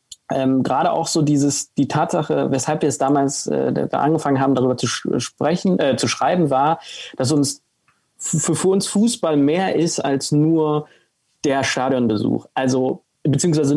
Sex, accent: male, German